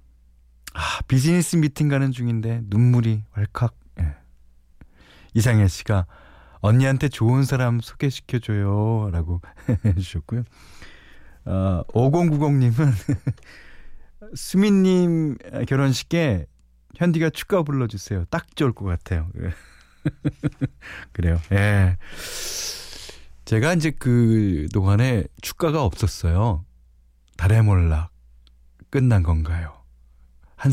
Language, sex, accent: Korean, male, native